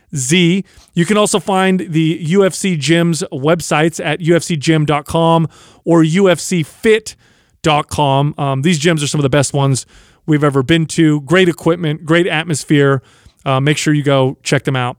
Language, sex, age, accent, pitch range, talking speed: English, male, 30-49, American, 145-180 Hz, 150 wpm